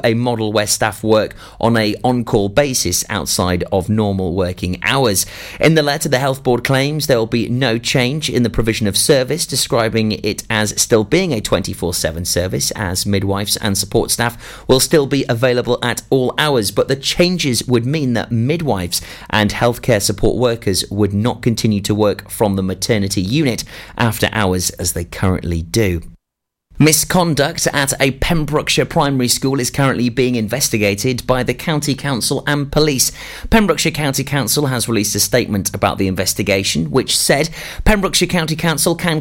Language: English